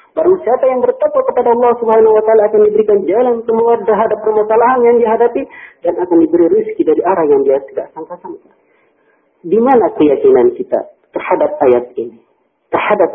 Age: 50-69